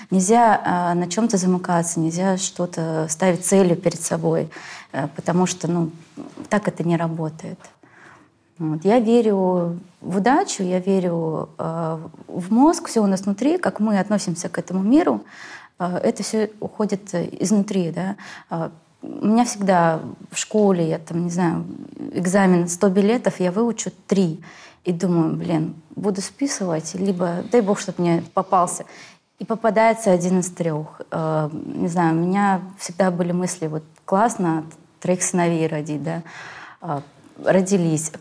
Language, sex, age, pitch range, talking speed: Russian, female, 20-39, 165-200 Hz, 145 wpm